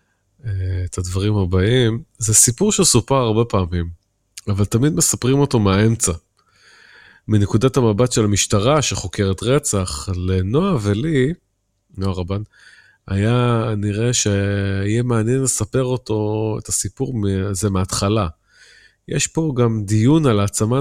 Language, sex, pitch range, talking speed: Hebrew, male, 95-120 Hz, 110 wpm